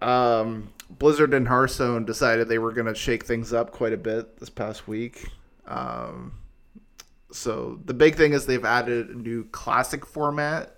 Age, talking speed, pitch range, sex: 20-39, 165 wpm, 110-130 Hz, male